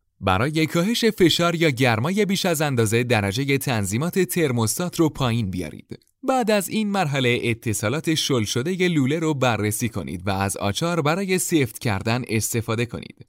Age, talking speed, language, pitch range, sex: 30-49, 150 wpm, Persian, 110-170 Hz, male